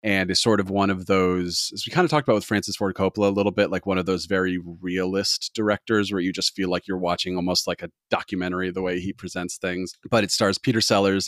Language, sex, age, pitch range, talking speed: English, male, 40-59, 90-105 Hz, 255 wpm